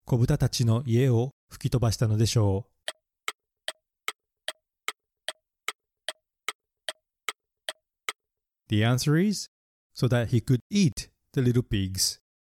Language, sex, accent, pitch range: Japanese, male, native, 105-155 Hz